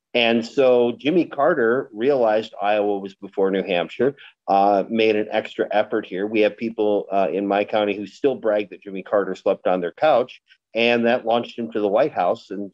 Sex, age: male, 50-69